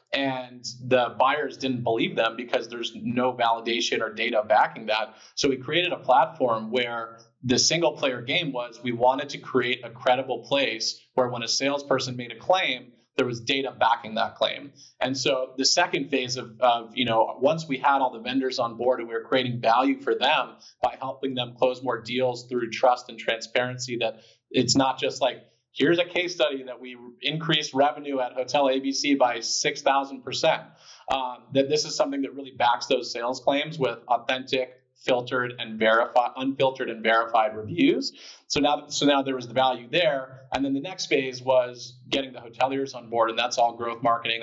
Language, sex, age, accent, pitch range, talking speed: English, male, 30-49, American, 120-135 Hz, 190 wpm